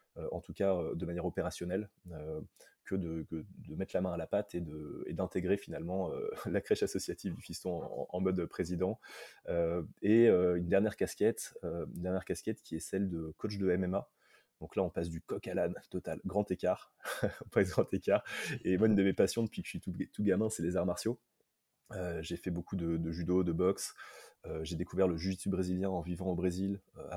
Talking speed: 220 wpm